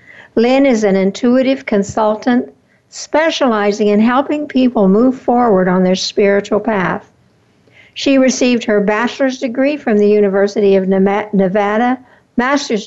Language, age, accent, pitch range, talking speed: English, 60-79, American, 200-235 Hz, 120 wpm